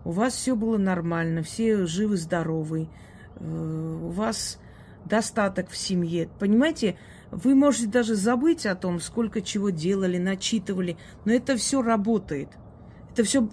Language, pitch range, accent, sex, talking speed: Russian, 175-220 Hz, native, female, 130 wpm